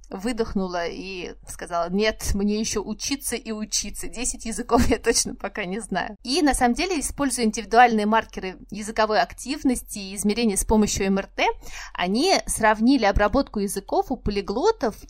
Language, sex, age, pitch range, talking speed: Russian, female, 30-49, 205-245 Hz, 145 wpm